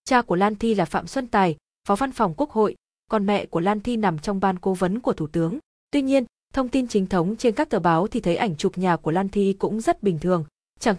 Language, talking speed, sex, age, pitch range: Vietnamese, 270 wpm, female, 20-39, 185-230 Hz